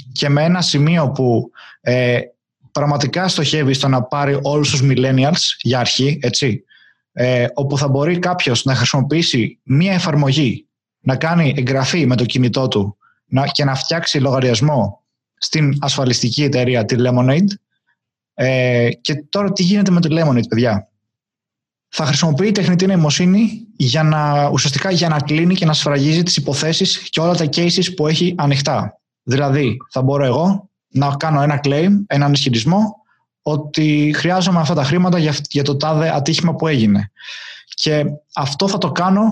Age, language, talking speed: 20-39, Greek, 155 wpm